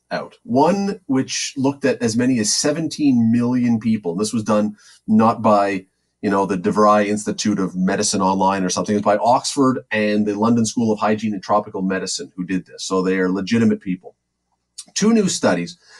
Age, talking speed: 40-59, 180 wpm